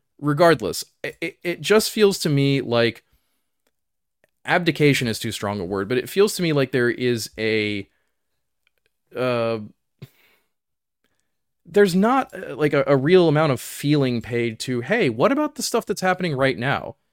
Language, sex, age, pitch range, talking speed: English, male, 20-39, 115-165 Hz, 155 wpm